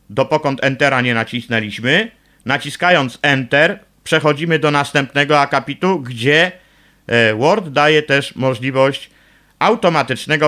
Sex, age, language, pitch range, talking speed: male, 50-69, Polish, 125-155 Hz, 90 wpm